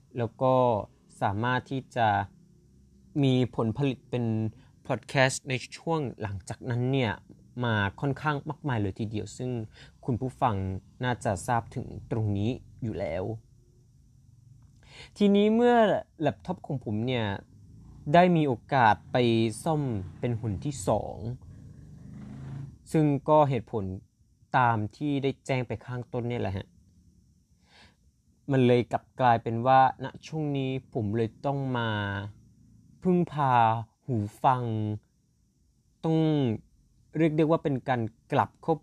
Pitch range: 110-135 Hz